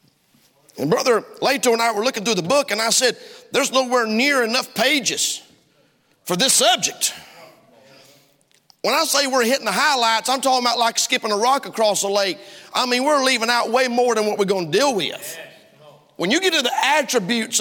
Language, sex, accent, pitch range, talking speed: English, male, American, 230-305 Hz, 195 wpm